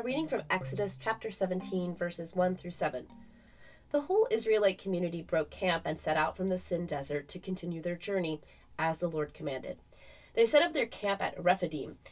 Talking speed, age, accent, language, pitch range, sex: 185 wpm, 20-39, American, English, 160-220 Hz, female